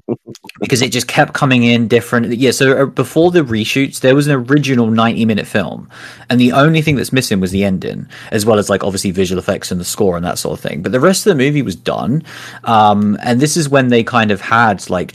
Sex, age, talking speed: male, 30-49, 240 wpm